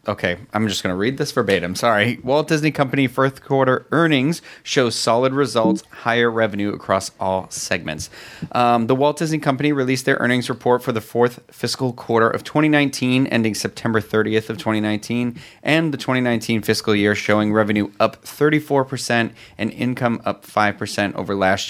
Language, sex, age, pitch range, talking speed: English, male, 30-49, 110-130 Hz, 165 wpm